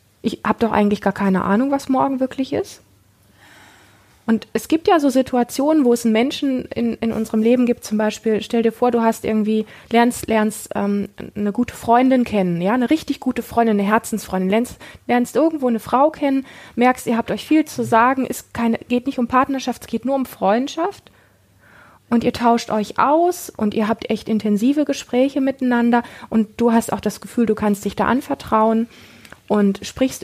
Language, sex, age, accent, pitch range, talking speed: German, female, 20-39, German, 220-275 Hz, 190 wpm